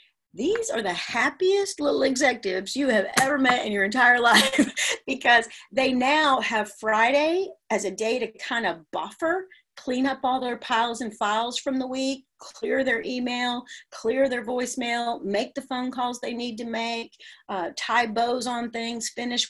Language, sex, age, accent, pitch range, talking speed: English, female, 40-59, American, 220-285 Hz, 170 wpm